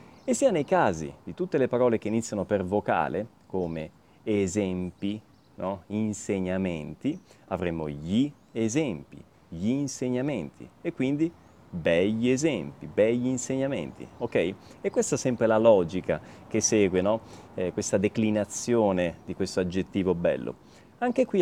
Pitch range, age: 95-120 Hz, 30-49